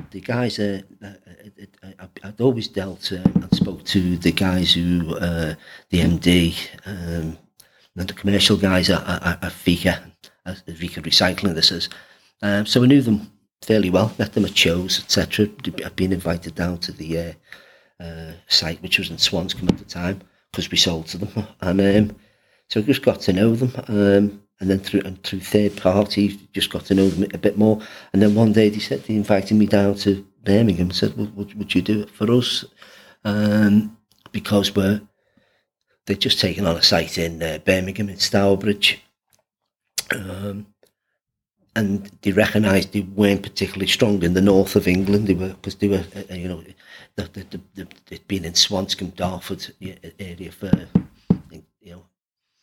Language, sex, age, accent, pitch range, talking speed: English, male, 40-59, British, 90-105 Hz, 180 wpm